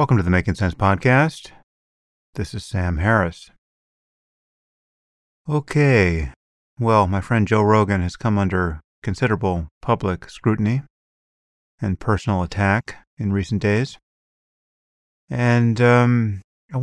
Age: 30-49